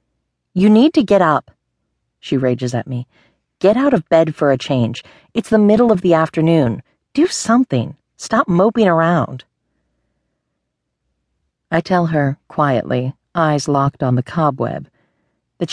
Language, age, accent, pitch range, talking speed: English, 40-59, American, 130-165 Hz, 140 wpm